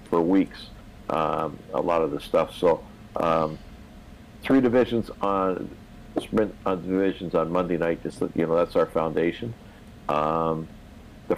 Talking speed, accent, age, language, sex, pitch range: 140 wpm, American, 50-69, English, male, 85-105 Hz